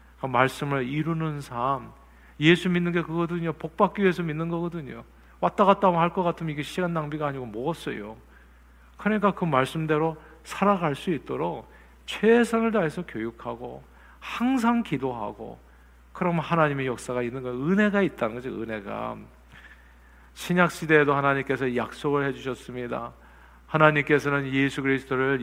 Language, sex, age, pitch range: Korean, male, 50-69, 125-170 Hz